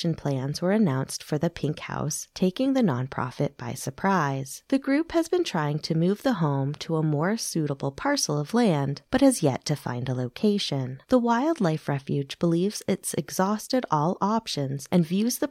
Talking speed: 180 wpm